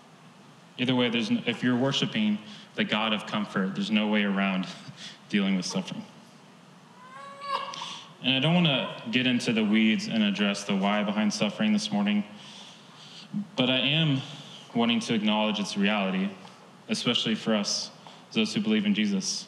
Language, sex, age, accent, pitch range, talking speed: English, male, 20-39, American, 155-210 Hz, 155 wpm